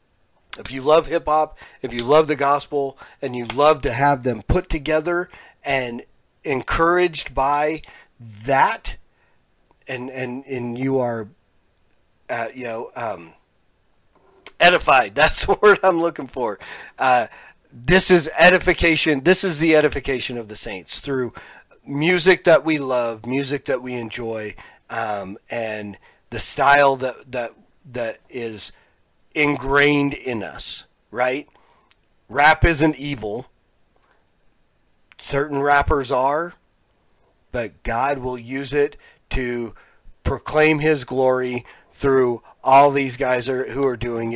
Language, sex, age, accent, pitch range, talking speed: English, male, 40-59, American, 120-150 Hz, 125 wpm